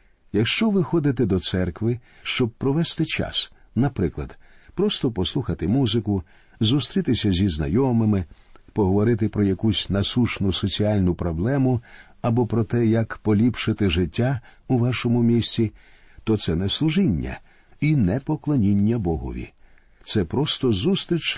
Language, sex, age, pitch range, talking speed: Ukrainian, male, 50-69, 100-130 Hz, 115 wpm